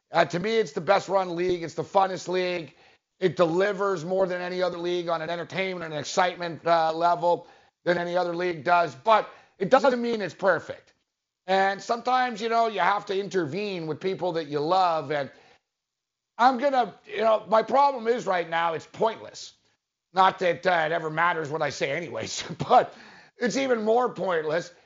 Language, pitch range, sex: English, 170-215 Hz, male